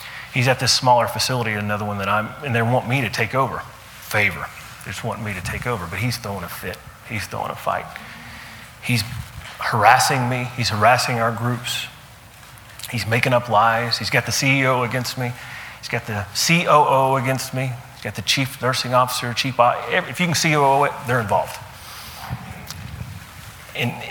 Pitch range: 110-130 Hz